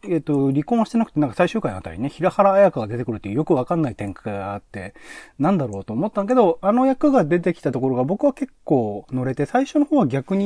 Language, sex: Japanese, male